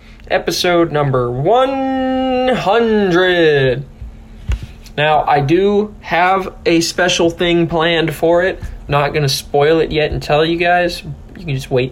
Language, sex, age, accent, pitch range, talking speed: English, male, 20-39, American, 135-175 Hz, 135 wpm